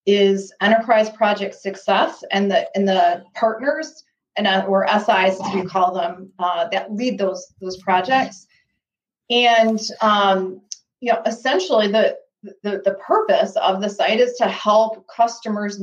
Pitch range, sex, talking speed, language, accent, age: 195-240 Hz, female, 145 wpm, English, American, 30-49